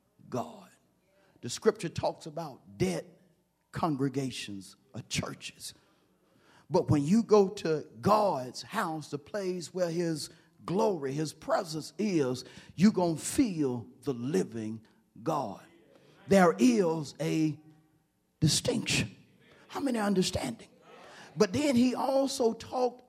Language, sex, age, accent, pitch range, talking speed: English, male, 40-59, American, 150-215 Hz, 115 wpm